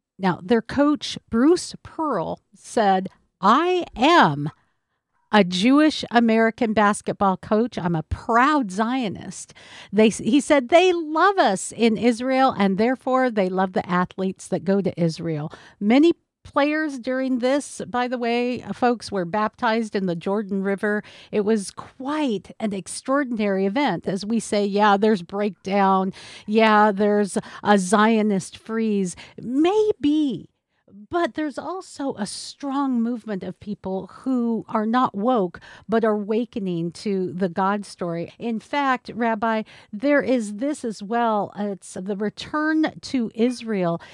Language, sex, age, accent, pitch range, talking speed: English, female, 50-69, American, 195-250 Hz, 135 wpm